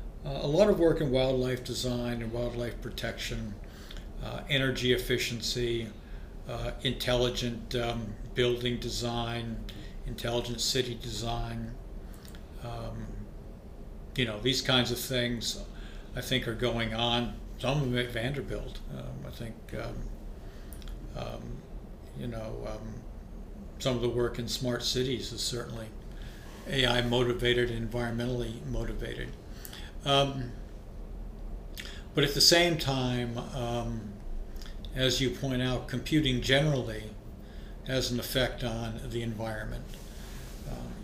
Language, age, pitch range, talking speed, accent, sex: English, 60-79, 110-125 Hz, 115 wpm, American, male